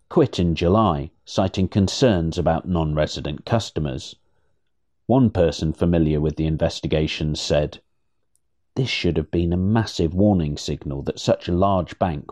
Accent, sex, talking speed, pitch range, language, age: British, male, 135 wpm, 80-100 Hz, English, 50-69